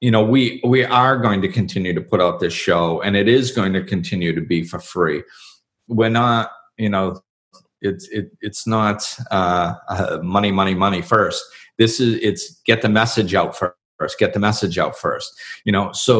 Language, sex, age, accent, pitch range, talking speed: English, male, 40-59, American, 100-135 Hz, 195 wpm